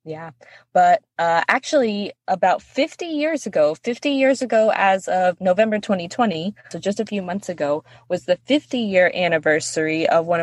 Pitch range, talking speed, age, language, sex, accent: 160-210 Hz, 155 wpm, 20-39, English, female, American